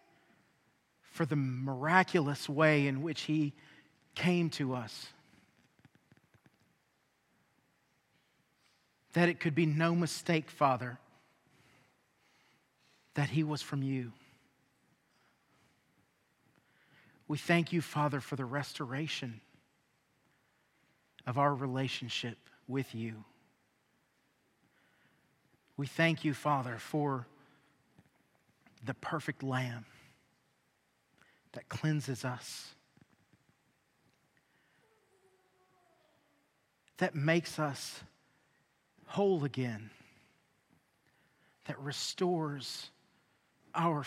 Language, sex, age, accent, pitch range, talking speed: English, male, 40-59, American, 130-160 Hz, 70 wpm